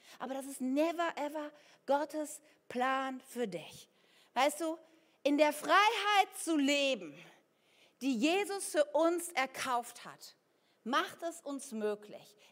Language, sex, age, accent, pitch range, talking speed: German, female, 40-59, German, 255-335 Hz, 125 wpm